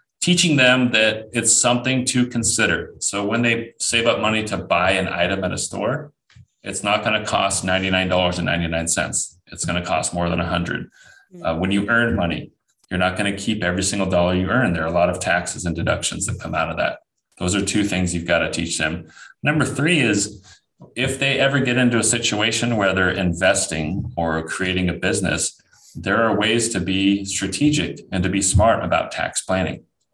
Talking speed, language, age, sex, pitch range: 200 wpm, English, 30-49, male, 90-115 Hz